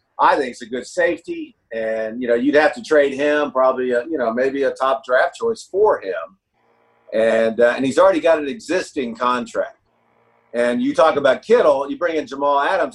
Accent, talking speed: American, 205 wpm